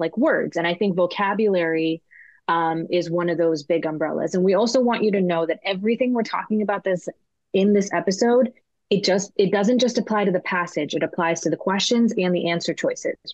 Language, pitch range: English, 170-225 Hz